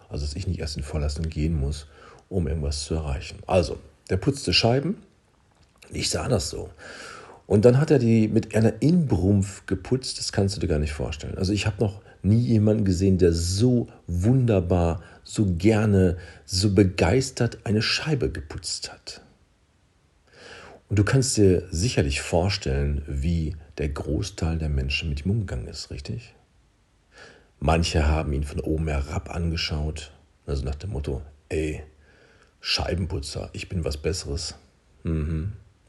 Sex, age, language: male, 40-59, German